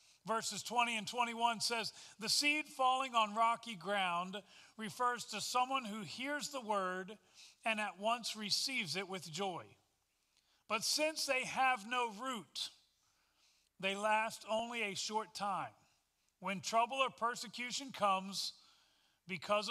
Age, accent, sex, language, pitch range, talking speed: 40-59, American, male, English, 195-235 Hz, 130 wpm